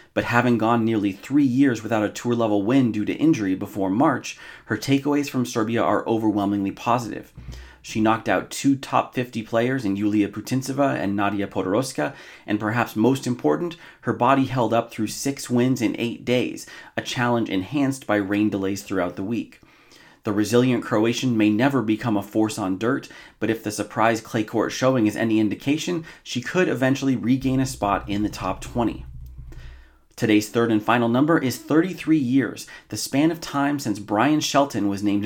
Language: English